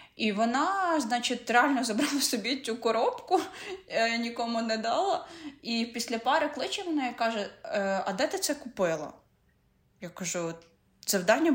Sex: female